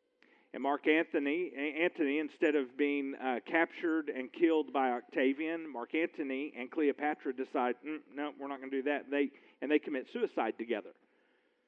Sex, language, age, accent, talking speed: male, English, 40-59, American, 170 wpm